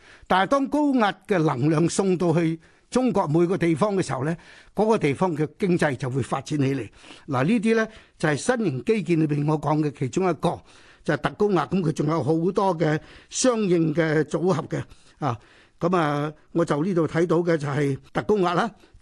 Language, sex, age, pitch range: Chinese, male, 60-79, 155-200 Hz